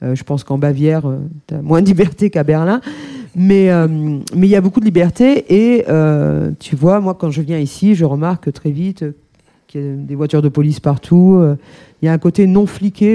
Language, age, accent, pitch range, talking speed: French, 40-59, French, 155-185 Hz, 235 wpm